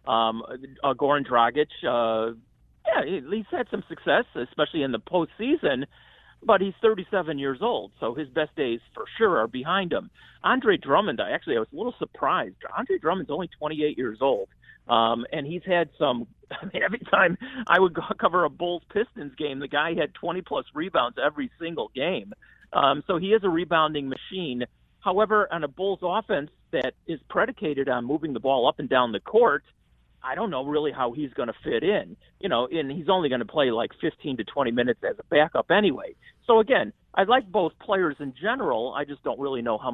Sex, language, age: male, English, 40-59